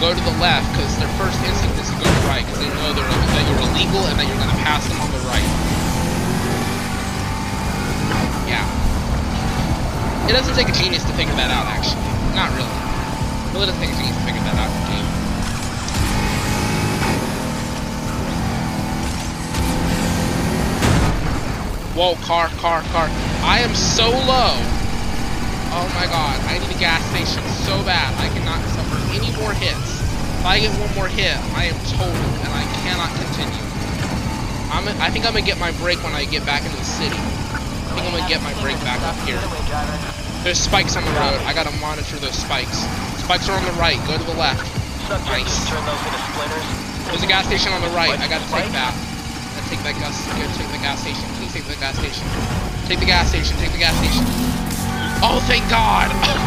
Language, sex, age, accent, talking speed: English, male, 20-39, American, 185 wpm